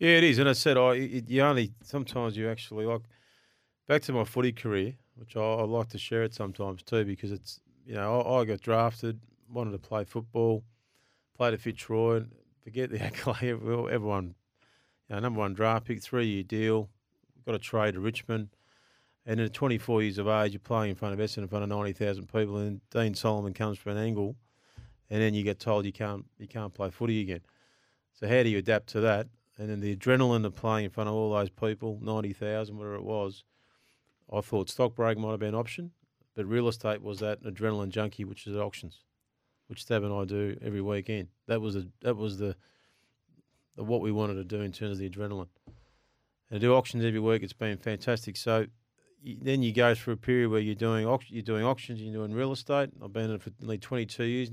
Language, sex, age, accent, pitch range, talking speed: English, male, 30-49, Australian, 105-120 Hz, 230 wpm